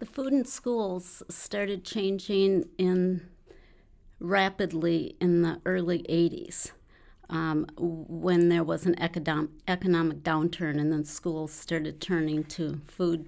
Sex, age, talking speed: female, 50-69, 115 wpm